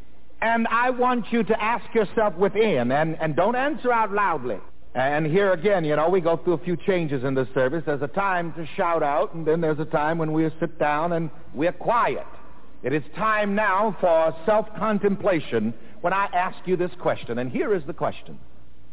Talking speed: 200 wpm